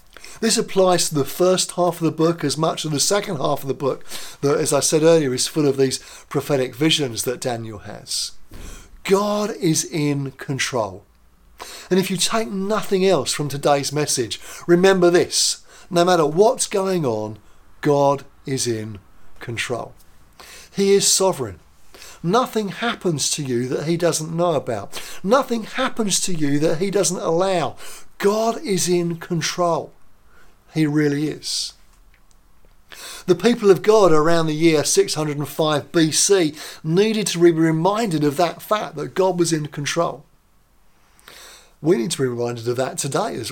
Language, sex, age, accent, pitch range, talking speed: English, male, 50-69, British, 140-185 Hz, 155 wpm